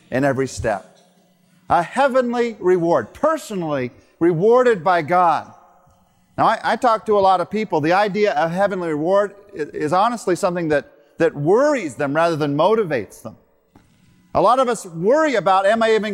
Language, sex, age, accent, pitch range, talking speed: English, male, 40-59, American, 170-230 Hz, 165 wpm